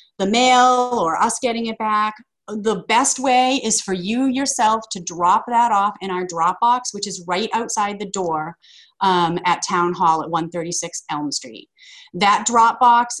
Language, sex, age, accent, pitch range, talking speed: English, female, 30-49, American, 180-240 Hz, 170 wpm